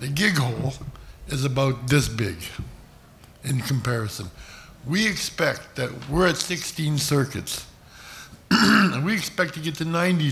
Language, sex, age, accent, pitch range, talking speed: English, male, 60-79, American, 100-135 Hz, 135 wpm